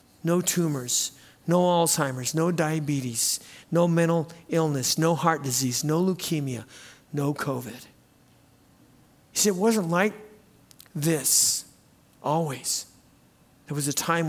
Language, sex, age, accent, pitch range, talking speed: English, male, 50-69, American, 145-190 Hz, 115 wpm